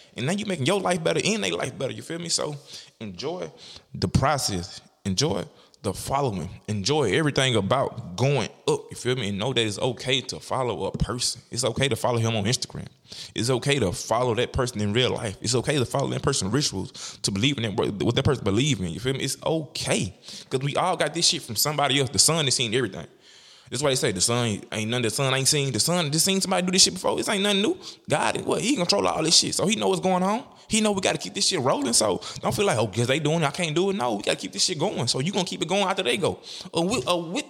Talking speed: 270 wpm